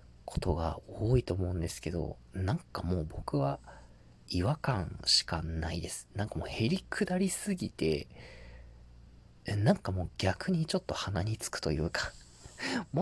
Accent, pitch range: native, 70-115 Hz